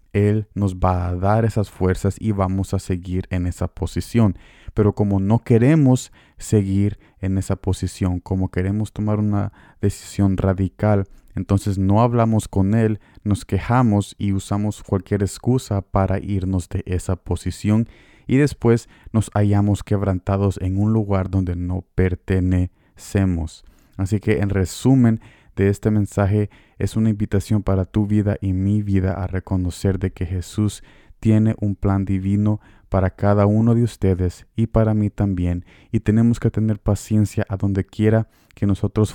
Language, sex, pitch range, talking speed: Spanish, male, 95-110 Hz, 150 wpm